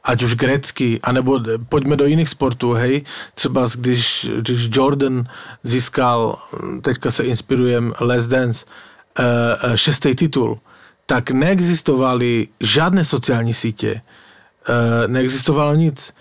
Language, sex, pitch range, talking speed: Slovak, male, 125-145 Hz, 105 wpm